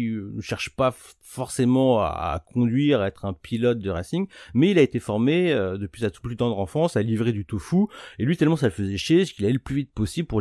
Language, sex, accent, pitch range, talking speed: French, male, French, 100-155 Hz, 235 wpm